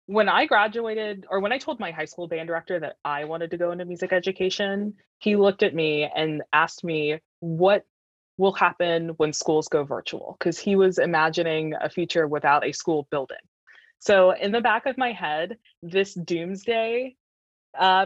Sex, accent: female, American